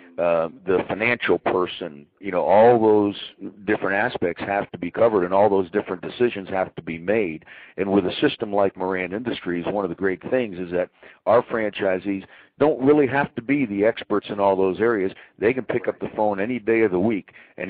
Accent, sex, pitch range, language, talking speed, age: American, male, 90-110 Hz, English, 210 wpm, 50-69